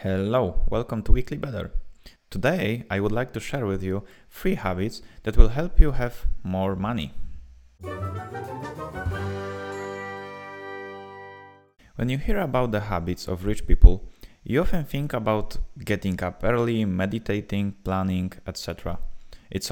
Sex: male